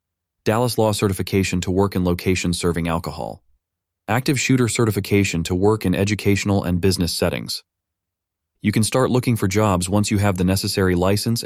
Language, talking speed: English, 160 wpm